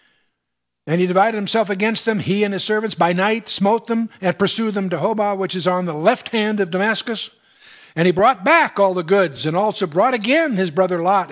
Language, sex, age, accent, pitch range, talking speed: English, male, 60-79, American, 165-220 Hz, 215 wpm